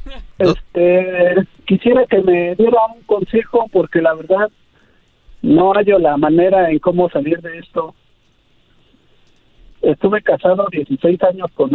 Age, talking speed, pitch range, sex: 50-69, 125 wpm, 150-195 Hz, male